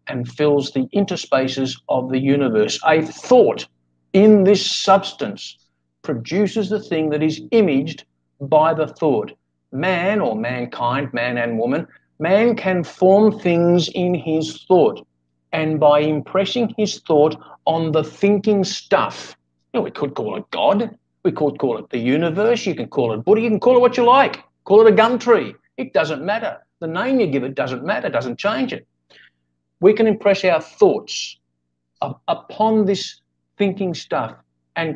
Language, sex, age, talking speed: English, male, 50-69, 160 wpm